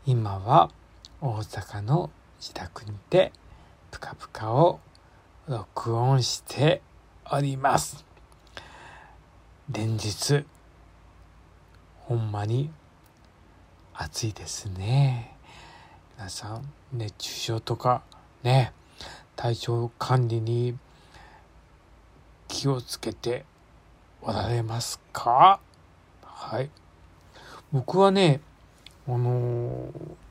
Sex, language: male, Japanese